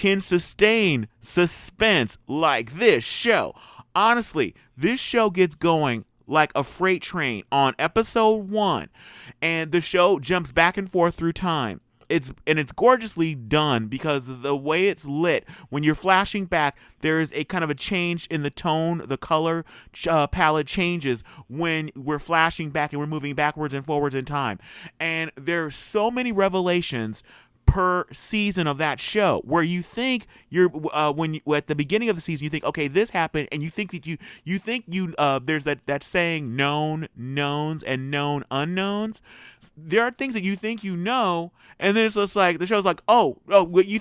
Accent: American